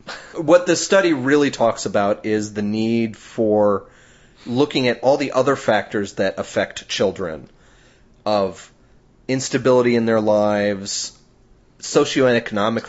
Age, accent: 30-49, American